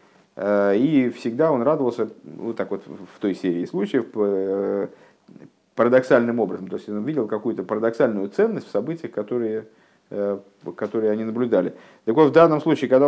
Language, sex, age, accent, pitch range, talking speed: Russian, male, 50-69, native, 110-155 Hz, 145 wpm